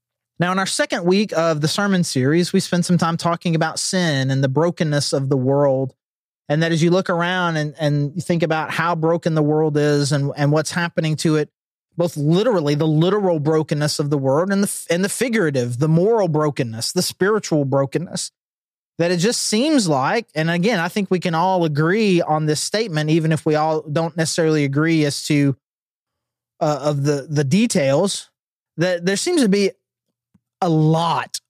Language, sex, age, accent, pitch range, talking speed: English, male, 30-49, American, 150-180 Hz, 190 wpm